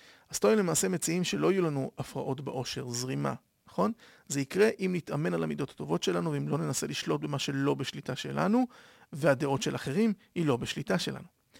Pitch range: 130-180 Hz